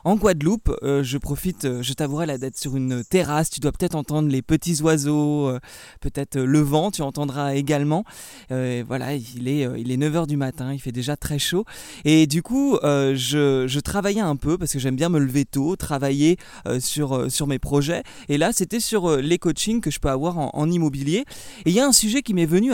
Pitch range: 145-190 Hz